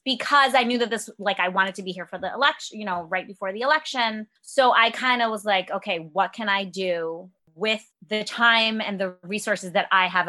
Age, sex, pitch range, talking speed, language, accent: 20-39, female, 185-230 Hz, 235 wpm, English, American